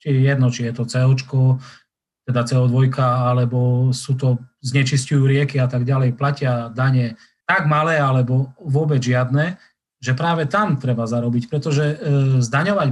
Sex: male